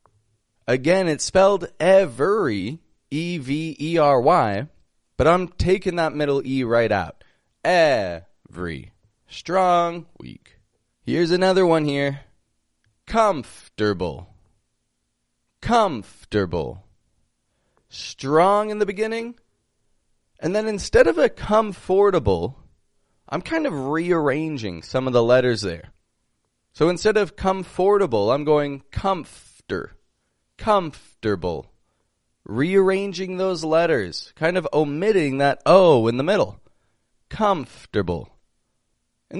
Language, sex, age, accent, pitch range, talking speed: English, male, 20-39, American, 135-190 Hz, 95 wpm